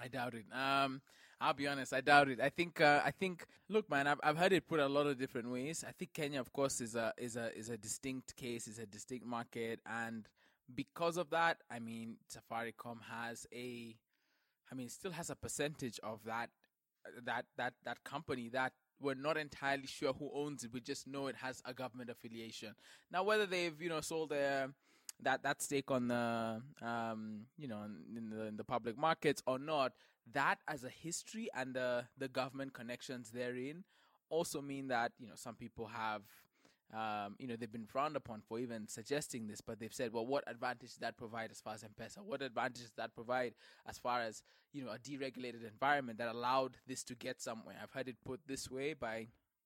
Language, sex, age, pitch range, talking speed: English, male, 20-39, 115-140 Hz, 210 wpm